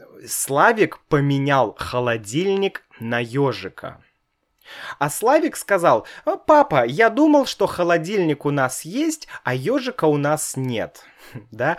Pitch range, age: 135-185 Hz, 20-39